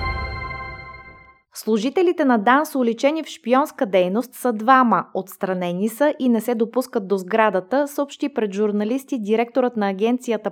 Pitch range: 200-250 Hz